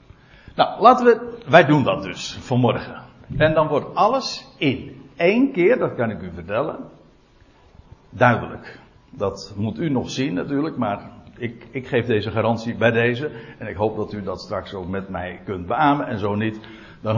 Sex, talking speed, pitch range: male, 180 wpm, 110-160 Hz